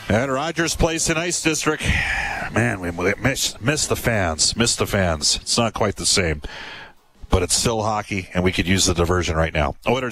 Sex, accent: male, American